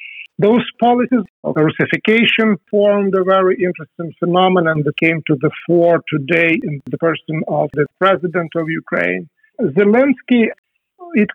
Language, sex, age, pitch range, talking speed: English, male, 50-69, 160-200 Hz, 130 wpm